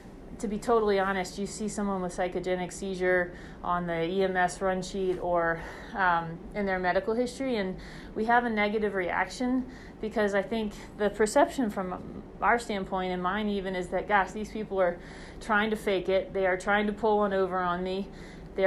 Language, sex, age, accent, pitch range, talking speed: English, female, 30-49, American, 185-210 Hz, 185 wpm